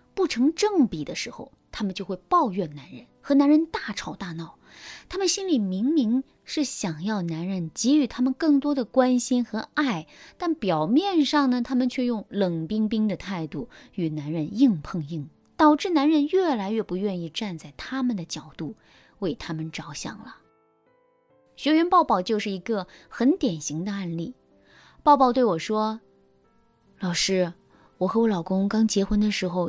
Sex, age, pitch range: female, 20-39, 180-250 Hz